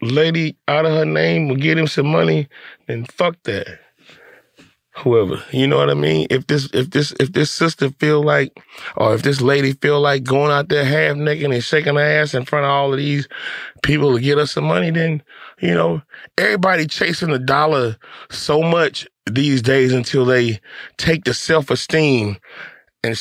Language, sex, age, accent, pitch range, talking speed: English, male, 20-39, American, 125-155 Hz, 190 wpm